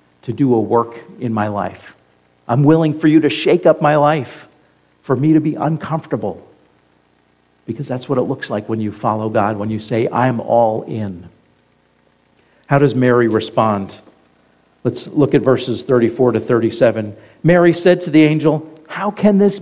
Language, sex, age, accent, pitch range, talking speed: English, male, 50-69, American, 105-155 Hz, 170 wpm